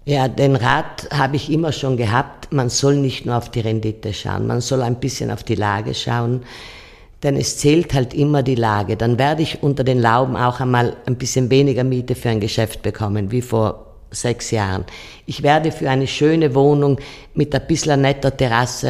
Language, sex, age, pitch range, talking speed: German, female, 50-69, 120-150 Hz, 195 wpm